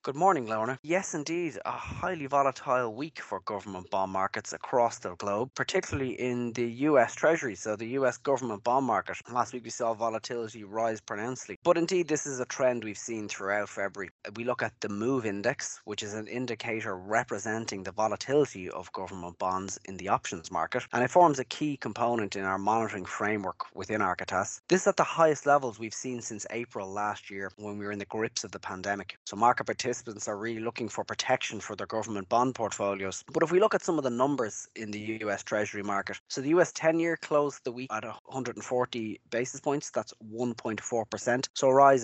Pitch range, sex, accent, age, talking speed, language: 105-130 Hz, male, Irish, 20-39, 200 wpm, English